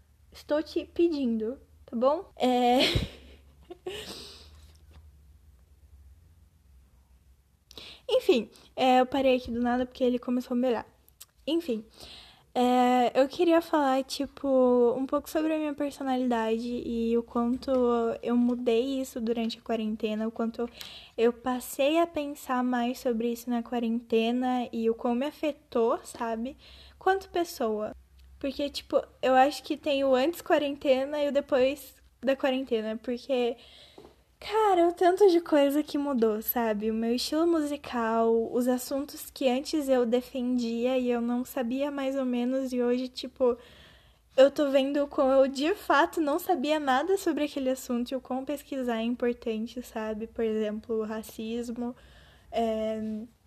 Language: Portuguese